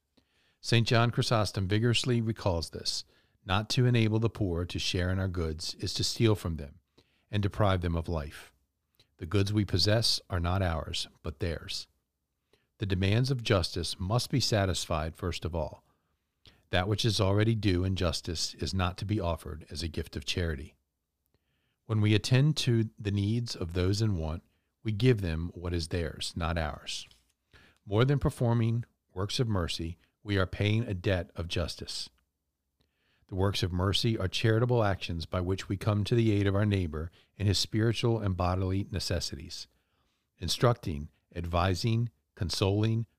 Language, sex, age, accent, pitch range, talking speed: English, male, 40-59, American, 85-110 Hz, 165 wpm